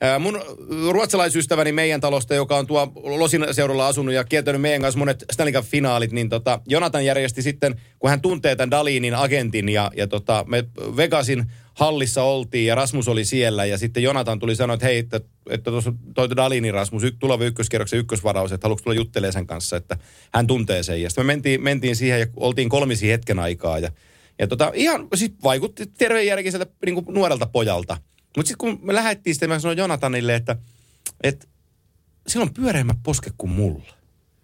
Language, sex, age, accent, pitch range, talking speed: Finnish, male, 30-49, native, 115-150 Hz, 170 wpm